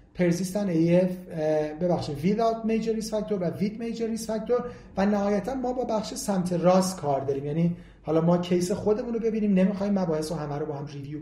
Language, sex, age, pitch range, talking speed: Persian, male, 40-59, 160-210 Hz, 175 wpm